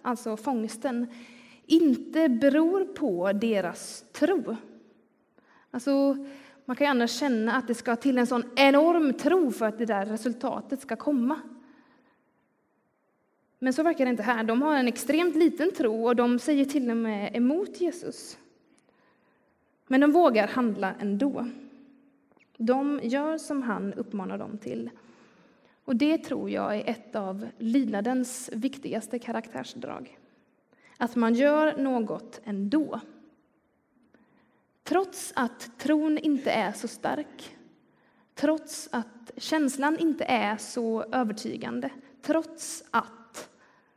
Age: 20-39